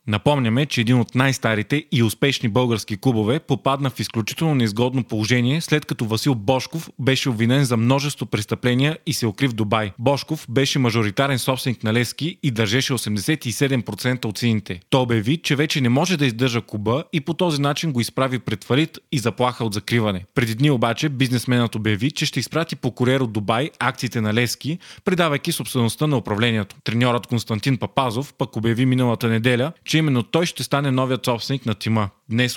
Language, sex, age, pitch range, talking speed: Bulgarian, male, 30-49, 115-140 Hz, 175 wpm